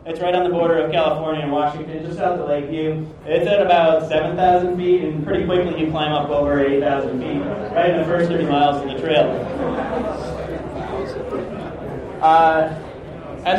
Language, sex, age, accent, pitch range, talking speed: English, male, 30-49, American, 145-175 Hz, 170 wpm